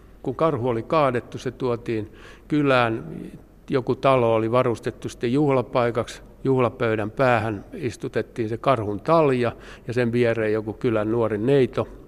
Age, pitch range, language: 50-69, 110-130 Hz, Finnish